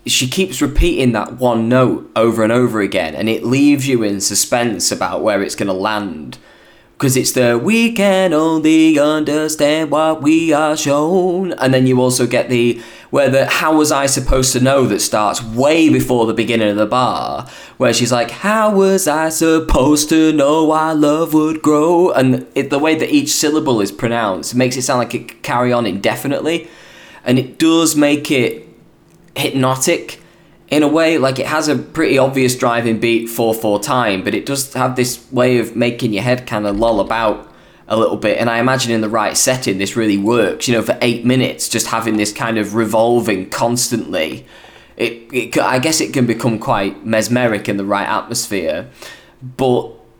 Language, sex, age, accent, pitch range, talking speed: English, male, 20-39, British, 115-155 Hz, 190 wpm